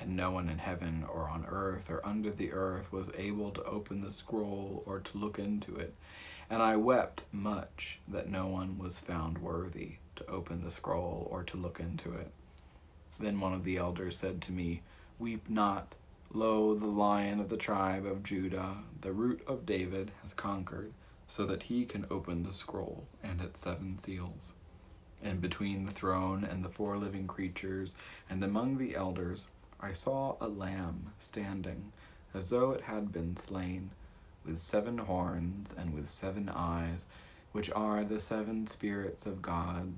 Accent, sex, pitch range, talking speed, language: American, male, 90-105 Hz, 175 wpm, English